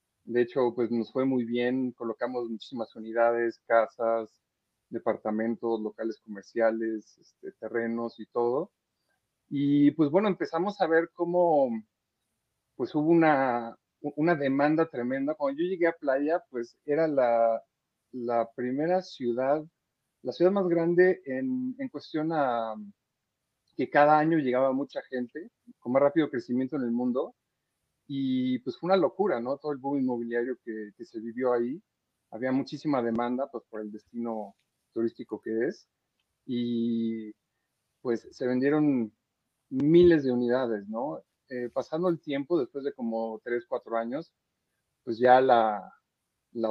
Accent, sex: Mexican, male